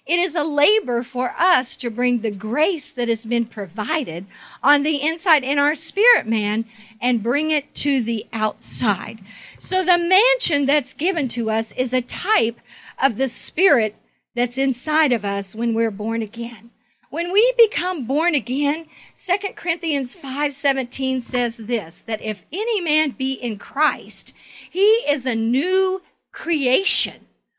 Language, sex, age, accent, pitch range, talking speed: English, female, 50-69, American, 240-345 Hz, 150 wpm